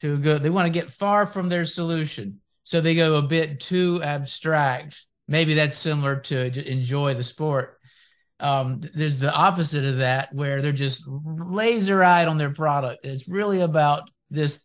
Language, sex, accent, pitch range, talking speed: English, male, American, 145-180 Hz, 170 wpm